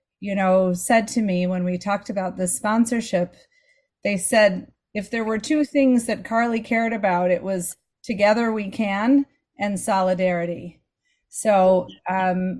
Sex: female